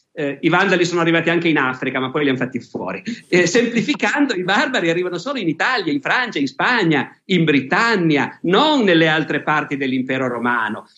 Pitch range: 155-210 Hz